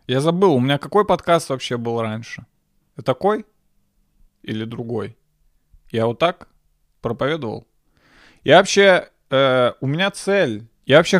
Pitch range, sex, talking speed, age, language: 120-165 Hz, male, 130 wpm, 20-39, Russian